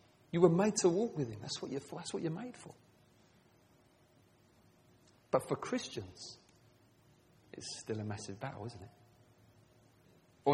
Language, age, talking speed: English, 30-49, 155 wpm